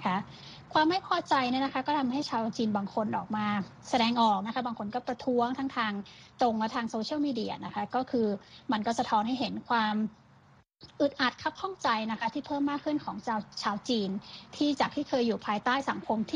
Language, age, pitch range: Thai, 20-39, 215-270 Hz